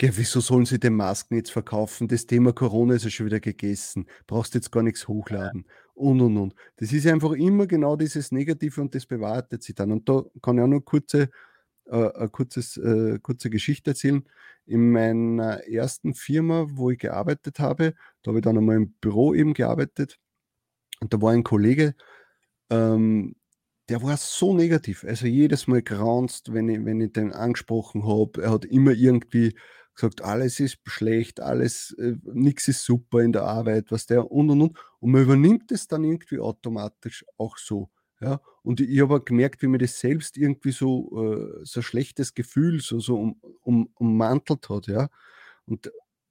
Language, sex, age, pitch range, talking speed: German, male, 30-49, 115-140 Hz, 185 wpm